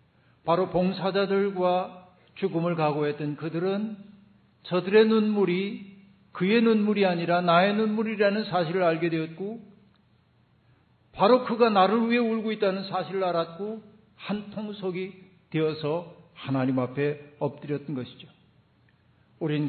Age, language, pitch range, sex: 50-69, Korean, 155-210 Hz, male